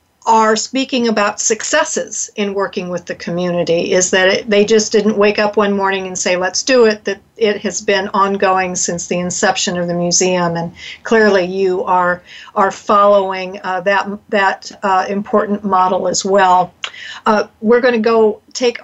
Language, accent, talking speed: English, American, 175 wpm